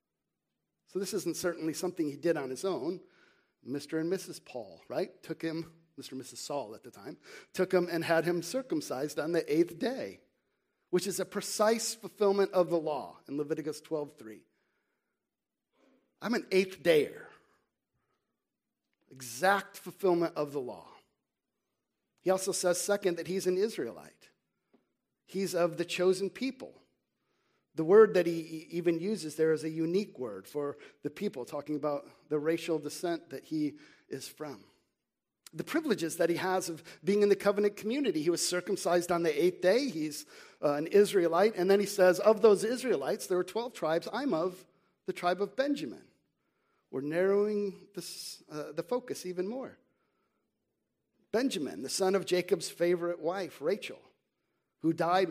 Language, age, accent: English, 50-69, American